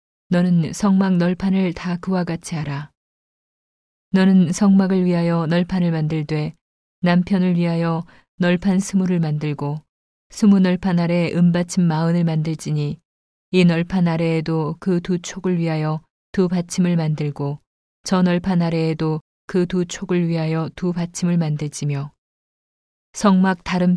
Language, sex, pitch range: Korean, female, 160-180 Hz